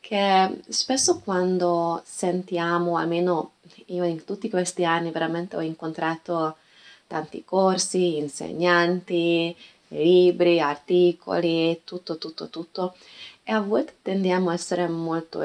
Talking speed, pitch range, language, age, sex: 110 wpm, 160-200 Hz, Italian, 20-39, female